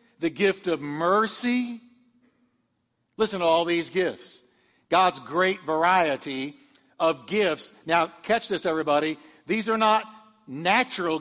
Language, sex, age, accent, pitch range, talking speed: English, male, 50-69, American, 185-235 Hz, 120 wpm